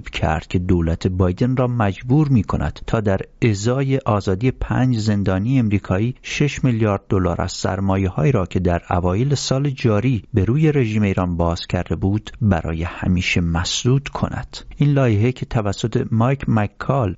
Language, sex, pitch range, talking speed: English, male, 95-130 Hz, 150 wpm